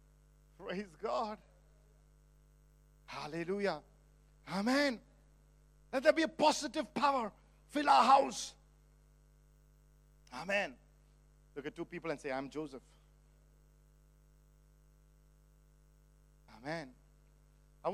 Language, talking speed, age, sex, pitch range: English, 80 wpm, 50-69, male, 150-235 Hz